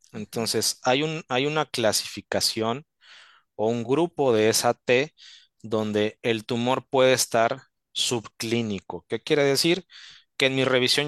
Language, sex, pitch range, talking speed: Spanish, male, 110-135 Hz, 135 wpm